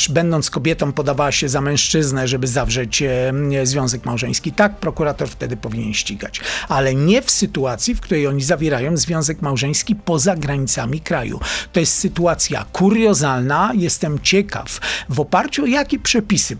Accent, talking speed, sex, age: native, 140 wpm, male, 40-59